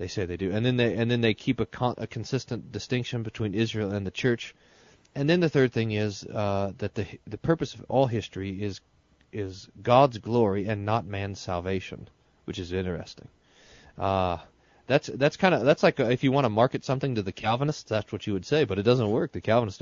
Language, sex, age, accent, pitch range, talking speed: English, male, 30-49, American, 100-140 Hz, 225 wpm